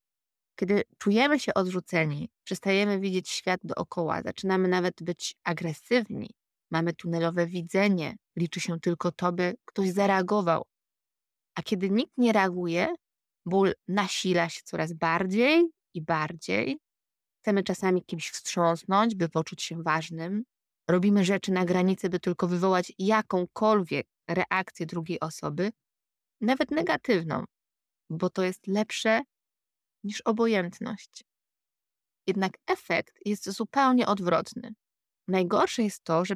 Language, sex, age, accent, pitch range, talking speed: Polish, female, 20-39, native, 170-205 Hz, 115 wpm